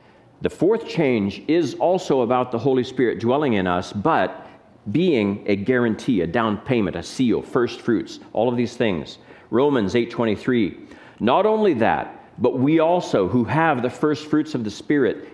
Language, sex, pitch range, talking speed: English, male, 110-160 Hz, 170 wpm